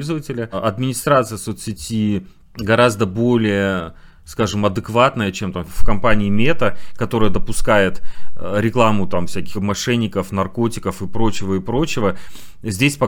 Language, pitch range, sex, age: Russian, 100-120 Hz, male, 30-49